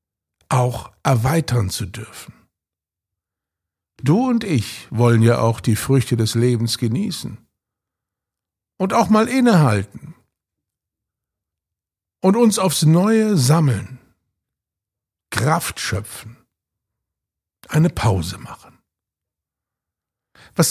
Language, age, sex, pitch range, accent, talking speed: German, 60-79, male, 105-150 Hz, German, 85 wpm